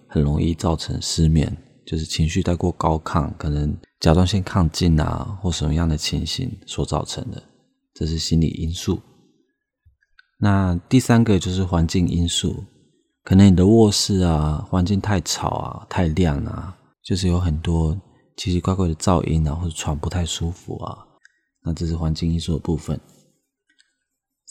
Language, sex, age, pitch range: Chinese, male, 20-39, 80-95 Hz